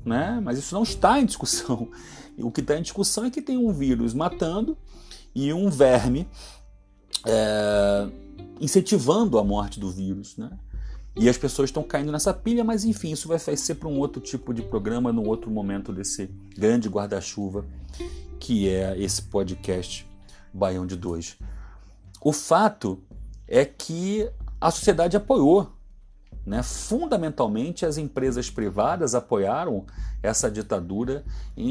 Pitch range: 100-150 Hz